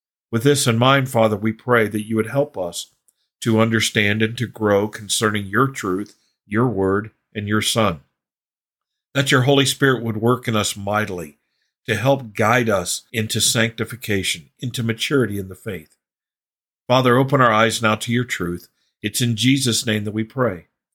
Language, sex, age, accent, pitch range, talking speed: English, male, 50-69, American, 105-130 Hz, 170 wpm